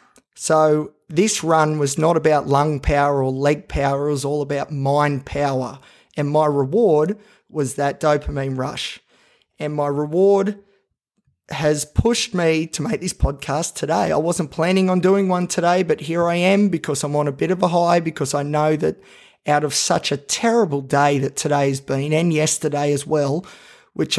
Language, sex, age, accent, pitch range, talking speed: English, male, 30-49, Australian, 145-170 Hz, 180 wpm